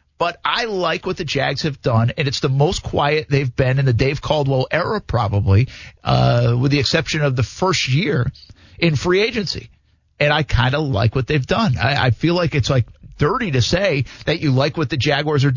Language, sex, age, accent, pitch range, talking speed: English, male, 50-69, American, 120-155 Hz, 215 wpm